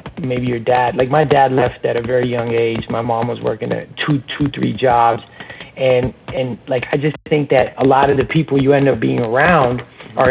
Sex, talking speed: male, 225 wpm